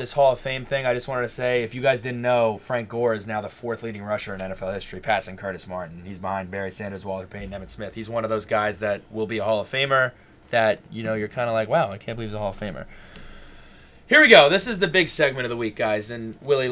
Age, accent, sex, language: 20-39, American, male, English